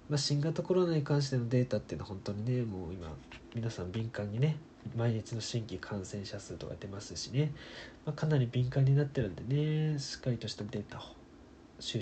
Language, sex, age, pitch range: Japanese, male, 20-39, 115-145 Hz